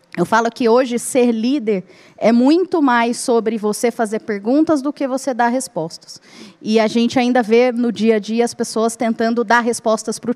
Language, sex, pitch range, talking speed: Portuguese, female, 225-265 Hz, 195 wpm